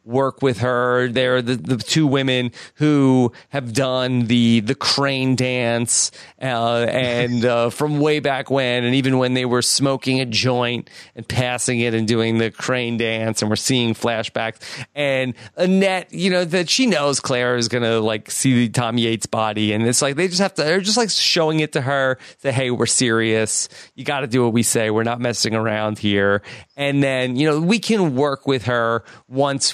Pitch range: 120-140 Hz